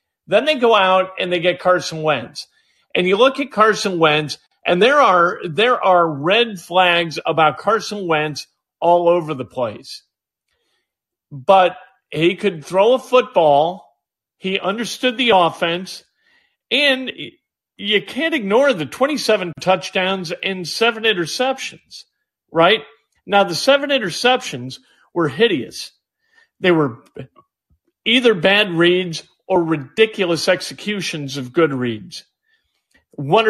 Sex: male